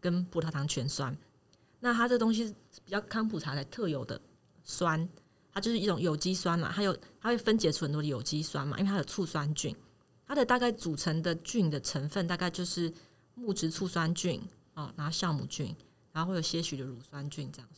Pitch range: 150-190 Hz